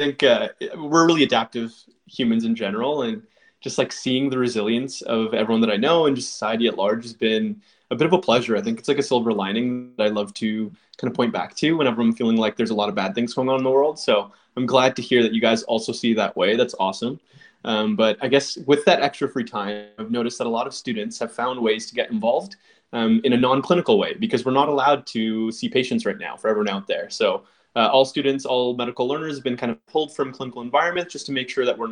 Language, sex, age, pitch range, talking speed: English, male, 20-39, 115-150 Hz, 260 wpm